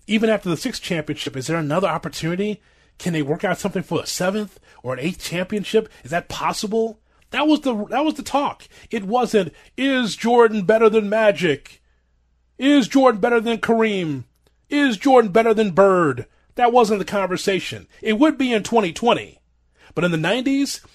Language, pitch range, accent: English, 150-225 Hz, American